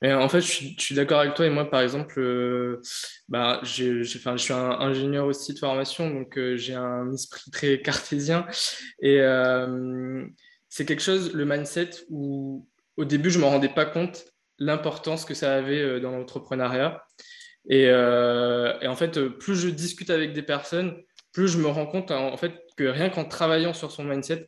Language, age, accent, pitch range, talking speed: French, 20-39, French, 130-155 Hz, 200 wpm